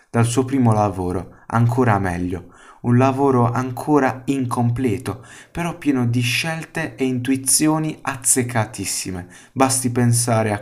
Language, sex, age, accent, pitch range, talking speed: Italian, male, 20-39, native, 110-140 Hz, 115 wpm